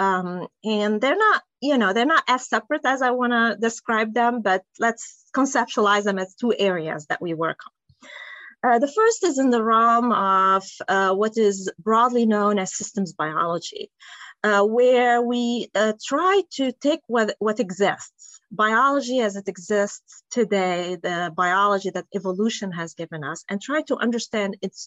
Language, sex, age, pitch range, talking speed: English, female, 30-49, 185-240 Hz, 170 wpm